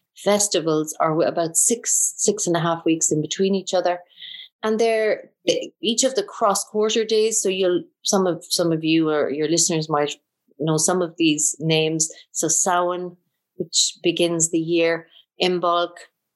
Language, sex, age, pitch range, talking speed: English, female, 30-49, 160-205 Hz, 160 wpm